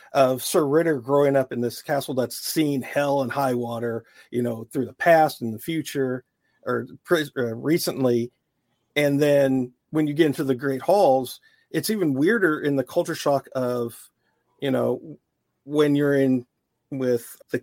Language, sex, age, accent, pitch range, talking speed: English, male, 40-59, American, 125-145 Hz, 165 wpm